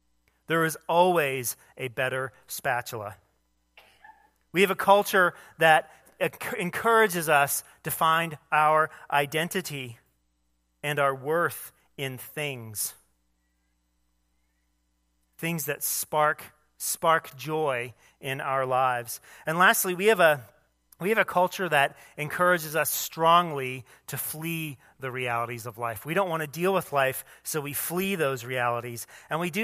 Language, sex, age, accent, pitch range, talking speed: English, male, 40-59, American, 120-170 Hz, 130 wpm